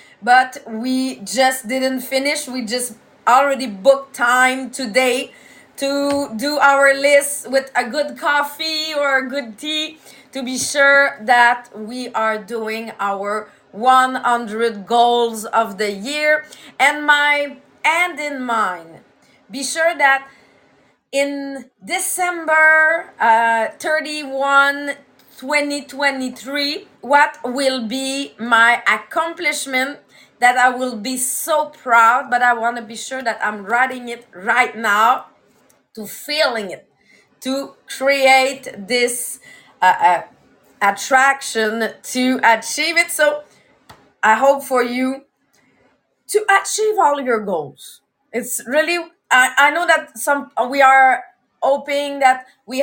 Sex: female